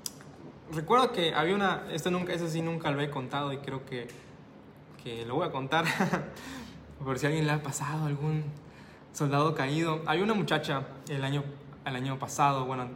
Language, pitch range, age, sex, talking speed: Spanish, 140-175 Hz, 20-39, male, 185 wpm